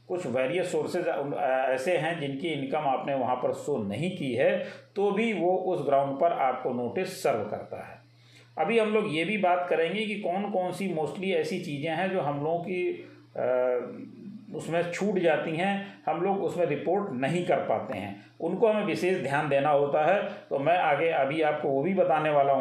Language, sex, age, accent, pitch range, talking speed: Hindi, male, 40-59, native, 140-195 Hz, 195 wpm